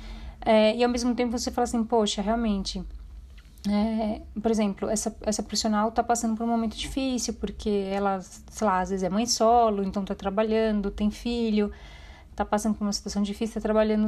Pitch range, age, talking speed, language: 200-230 Hz, 30-49, 190 wpm, Portuguese